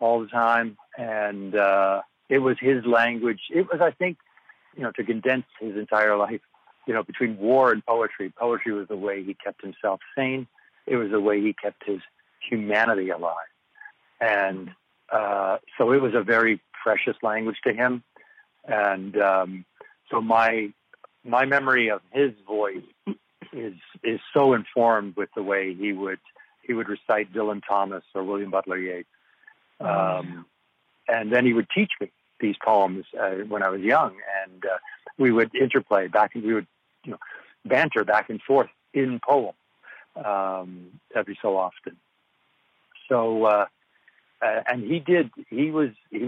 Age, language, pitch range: 60-79, English, 100-120 Hz